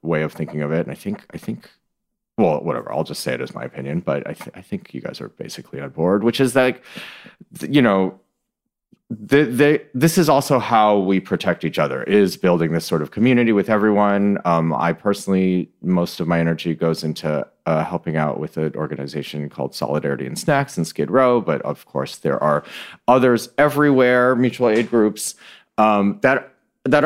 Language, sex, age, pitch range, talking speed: English, male, 30-49, 85-115 Hz, 195 wpm